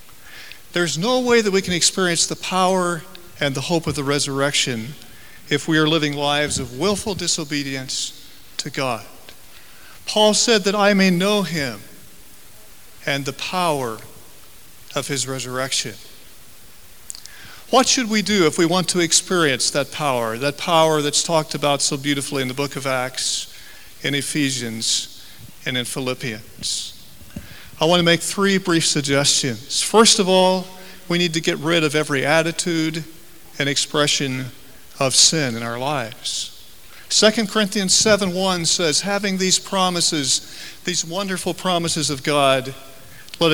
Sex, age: male, 50-69